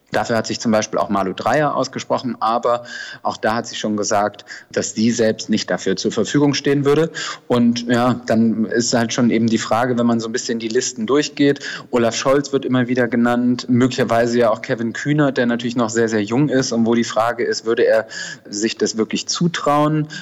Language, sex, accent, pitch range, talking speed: German, male, German, 110-125 Hz, 210 wpm